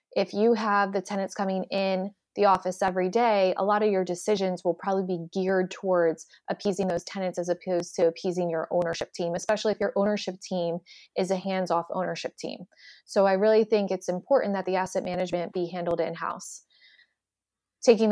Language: English